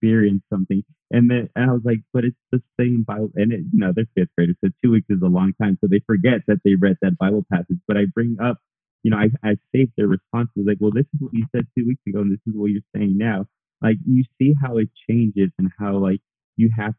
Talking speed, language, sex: 265 wpm, English, male